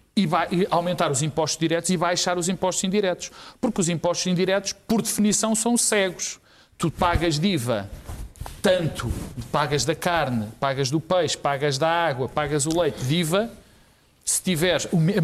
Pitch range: 150-215 Hz